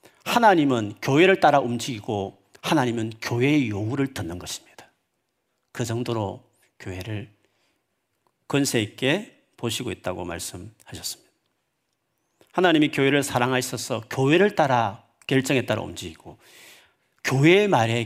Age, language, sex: 40-59, Korean, male